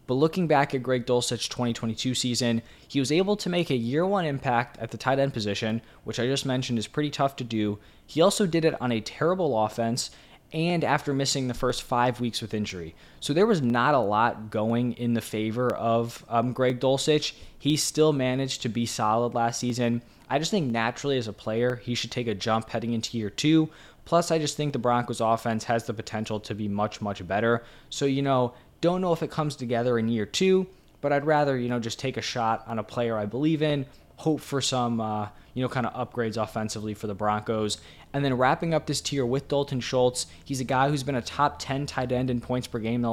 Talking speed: 230 wpm